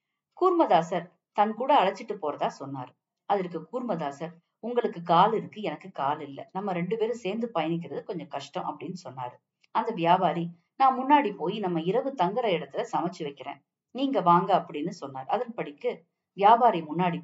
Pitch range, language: 155-215 Hz, Tamil